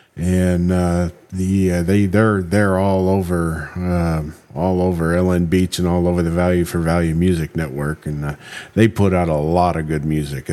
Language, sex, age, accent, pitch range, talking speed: English, male, 50-69, American, 85-110 Hz, 195 wpm